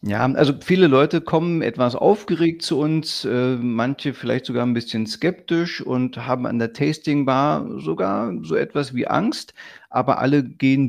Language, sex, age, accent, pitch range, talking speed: German, male, 40-59, German, 120-145 Hz, 165 wpm